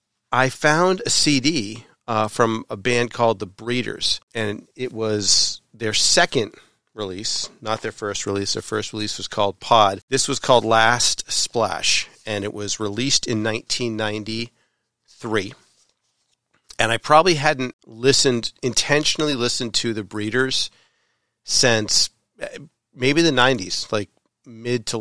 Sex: male